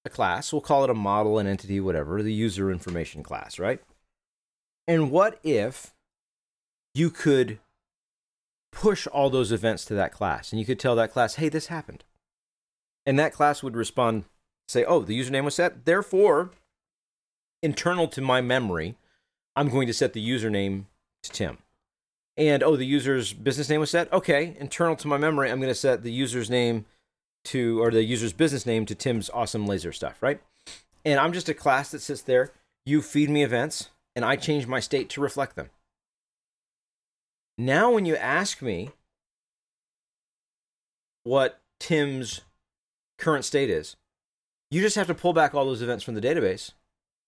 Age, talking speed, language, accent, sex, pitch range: 40-59, 170 wpm, English, American, male, 110-150 Hz